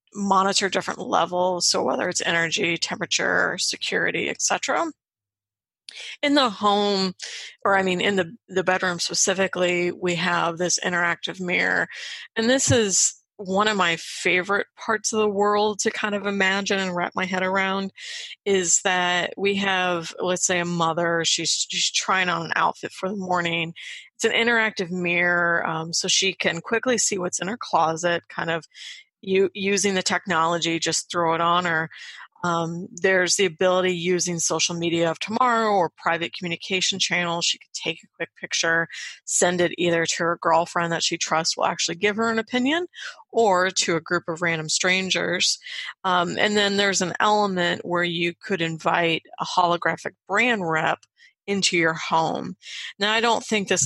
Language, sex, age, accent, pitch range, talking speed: English, female, 30-49, American, 170-200 Hz, 170 wpm